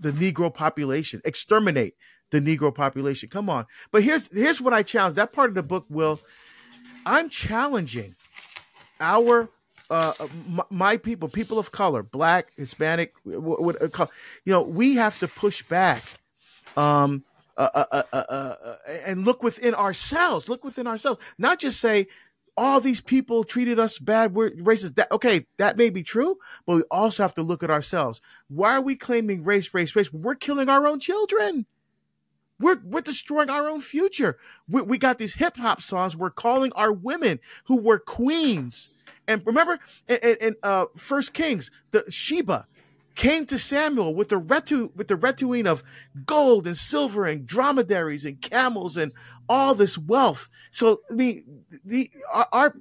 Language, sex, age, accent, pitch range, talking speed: English, male, 40-59, American, 170-250 Hz, 165 wpm